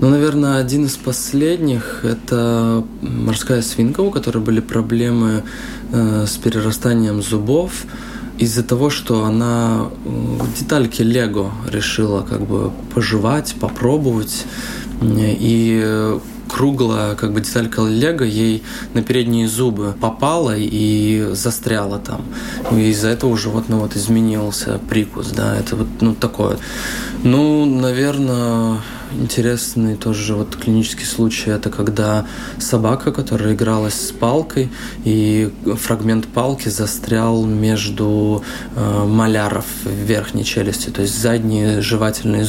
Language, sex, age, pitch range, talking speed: Russian, male, 20-39, 110-120 Hz, 115 wpm